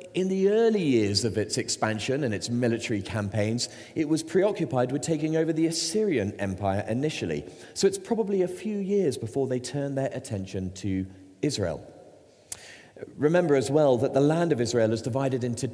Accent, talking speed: British, 170 wpm